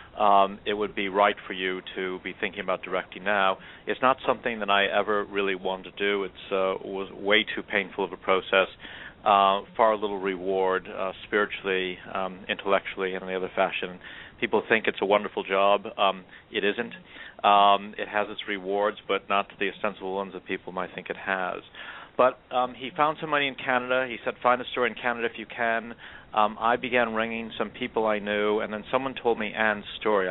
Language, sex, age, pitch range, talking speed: English, male, 40-59, 95-110 Hz, 205 wpm